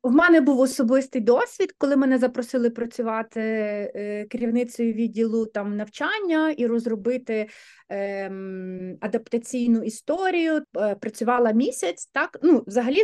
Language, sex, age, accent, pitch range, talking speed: Ukrainian, female, 30-49, native, 230-280 Hz, 100 wpm